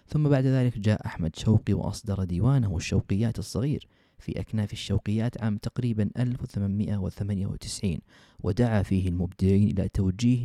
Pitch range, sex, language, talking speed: 95-115 Hz, male, Arabic, 120 wpm